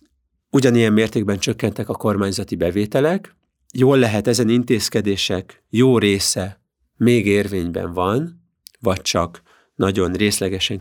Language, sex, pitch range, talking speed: Hungarian, male, 100-125 Hz, 105 wpm